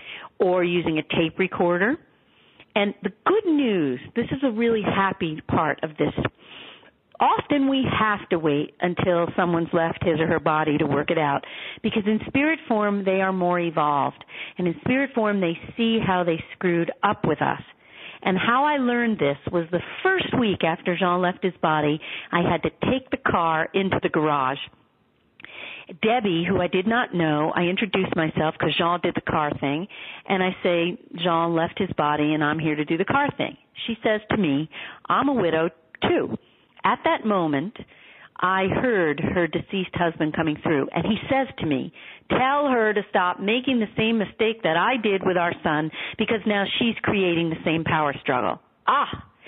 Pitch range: 165-220 Hz